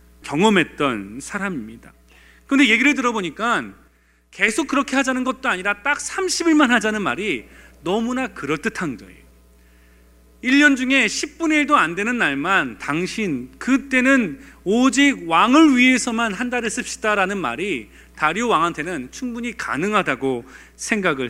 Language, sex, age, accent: Korean, male, 40-59, native